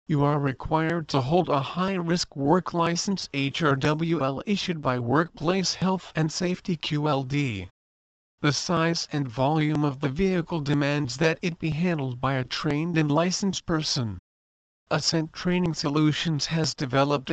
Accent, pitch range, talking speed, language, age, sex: American, 140-170 Hz, 140 wpm, English, 50-69, male